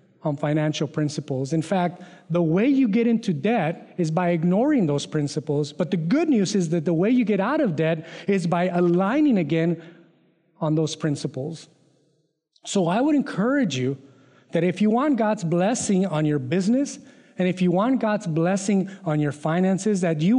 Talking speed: 180 wpm